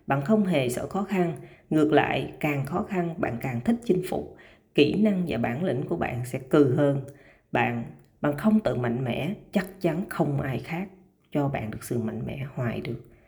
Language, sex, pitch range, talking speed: Vietnamese, female, 125-190 Hz, 205 wpm